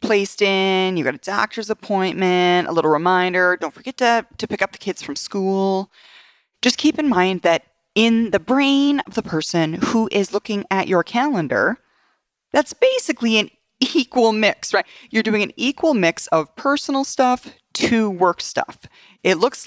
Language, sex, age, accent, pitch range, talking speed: English, female, 30-49, American, 170-255 Hz, 170 wpm